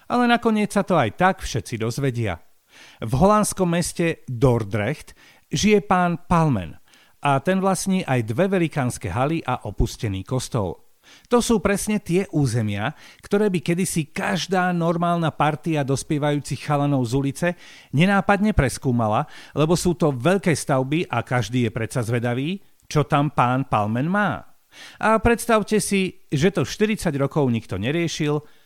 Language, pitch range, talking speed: Slovak, 125-185 Hz, 140 wpm